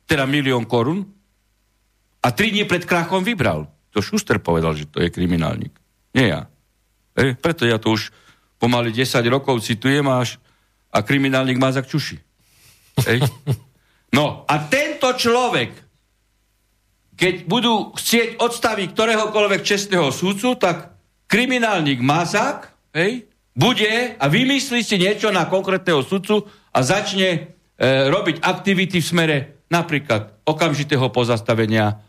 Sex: male